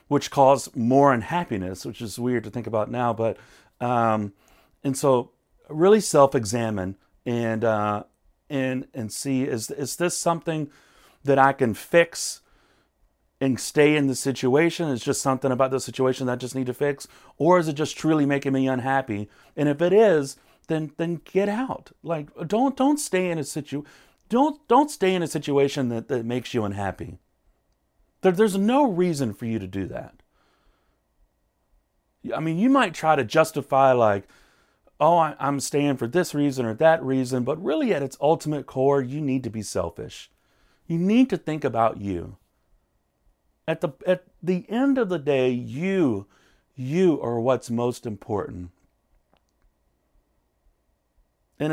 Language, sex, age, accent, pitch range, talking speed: English, male, 40-59, American, 110-155 Hz, 160 wpm